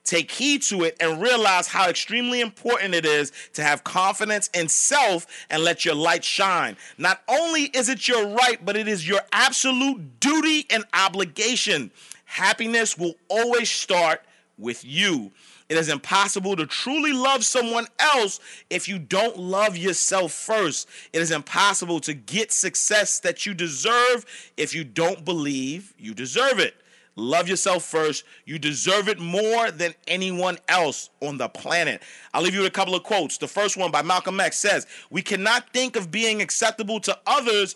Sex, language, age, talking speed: male, English, 30-49, 170 wpm